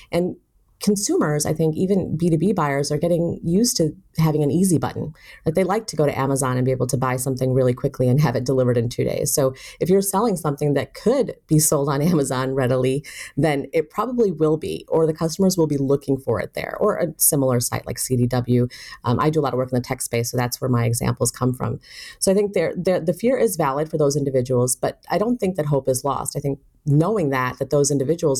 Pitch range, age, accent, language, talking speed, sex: 135-165 Hz, 30-49, American, English, 245 wpm, female